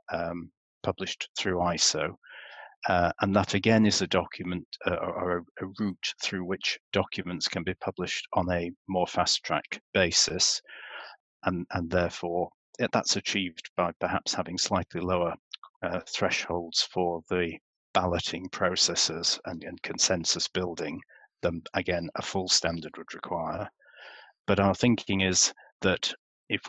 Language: English